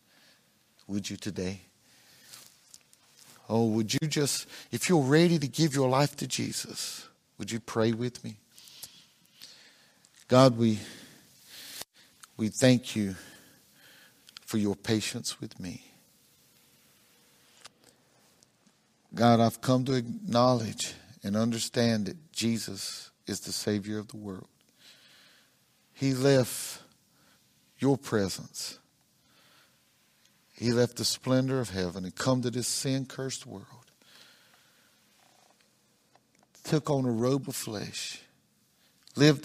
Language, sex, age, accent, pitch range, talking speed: English, male, 50-69, American, 105-130 Hz, 105 wpm